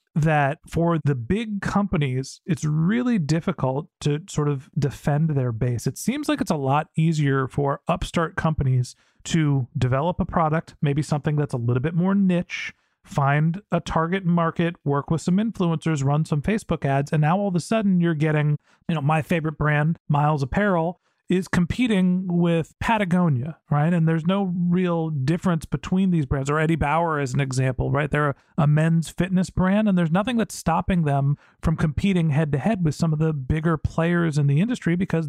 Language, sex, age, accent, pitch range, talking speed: English, male, 40-59, American, 145-175 Hz, 185 wpm